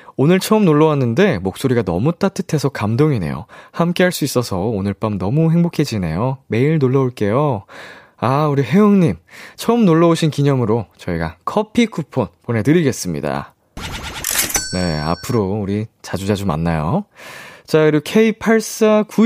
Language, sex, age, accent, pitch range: Korean, male, 20-39, native, 105-165 Hz